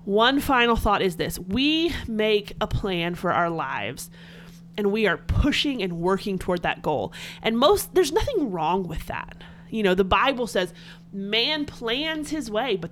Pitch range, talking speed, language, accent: 170-245 Hz, 175 wpm, English, American